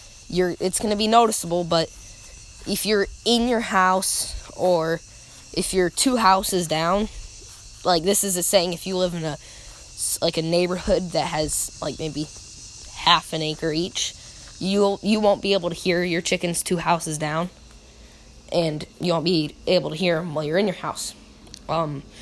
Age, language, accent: 10-29, English, American